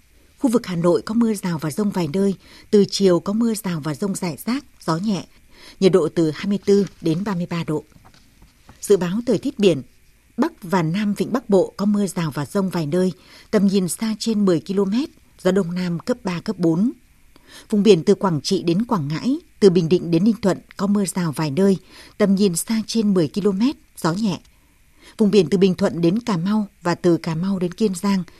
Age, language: 60-79, Vietnamese